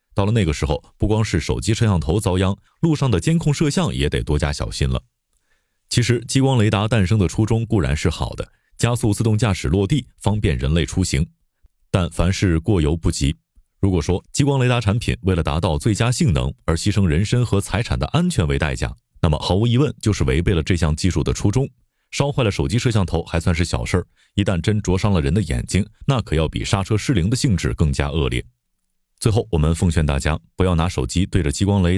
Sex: male